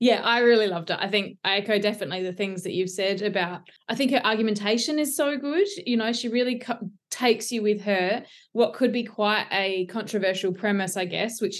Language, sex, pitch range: English, female, 190-225 Hz